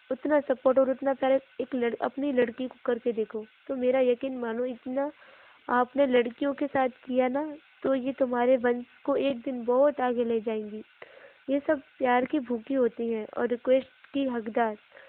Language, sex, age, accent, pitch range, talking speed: Hindi, female, 20-39, native, 245-285 Hz, 175 wpm